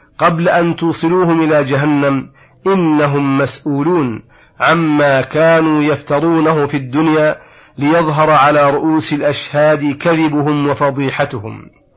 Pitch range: 140-160 Hz